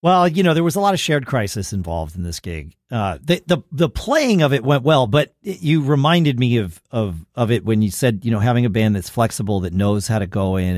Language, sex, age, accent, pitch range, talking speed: English, male, 40-59, American, 95-130 Hz, 265 wpm